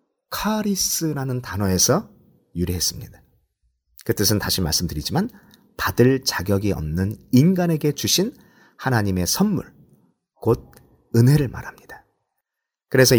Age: 40-59